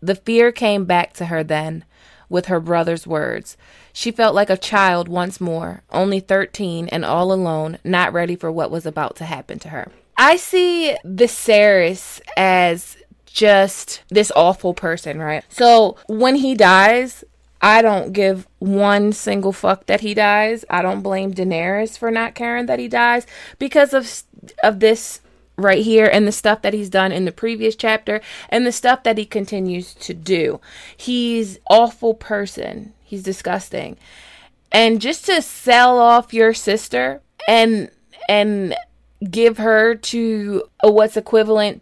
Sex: female